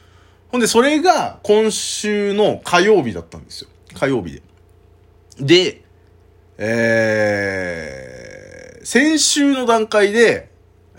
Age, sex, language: 20-39, male, Japanese